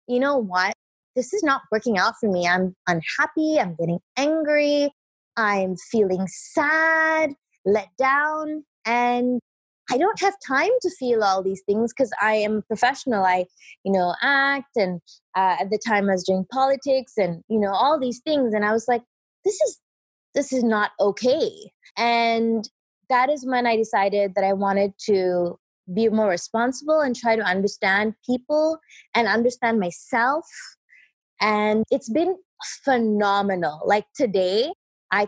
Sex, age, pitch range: female, 20-39, 200-270 Hz